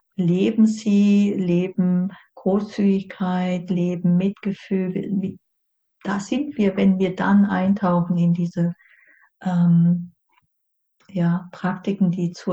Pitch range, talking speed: 175-200 Hz, 95 wpm